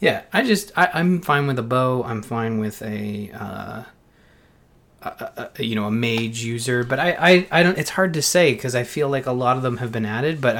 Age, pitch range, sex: 30-49, 110-135 Hz, male